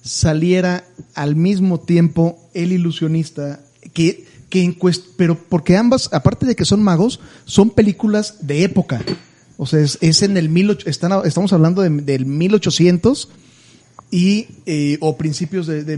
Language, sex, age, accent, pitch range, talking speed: Spanish, male, 30-49, Mexican, 145-180 Hz, 155 wpm